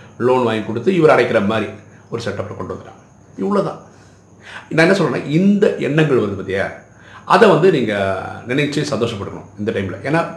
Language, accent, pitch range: Tamil, native, 105-135 Hz